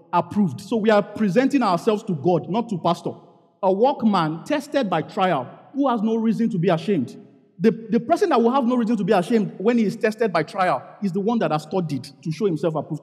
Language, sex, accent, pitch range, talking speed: English, male, Nigerian, 170-230 Hz, 230 wpm